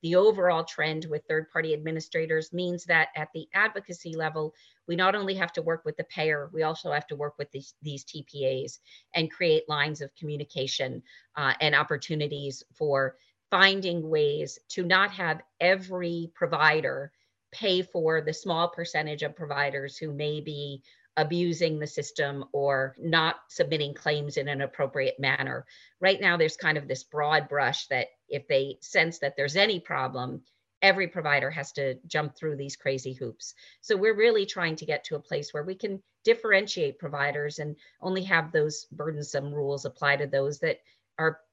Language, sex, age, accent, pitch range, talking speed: English, female, 40-59, American, 145-170 Hz, 170 wpm